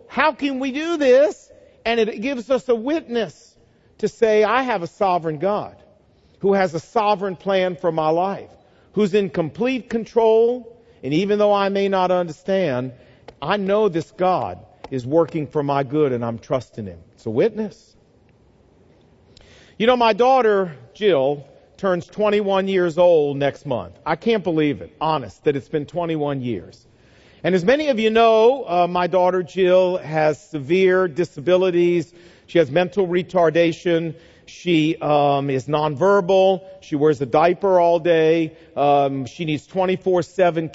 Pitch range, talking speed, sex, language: 155-200 Hz, 155 wpm, male, English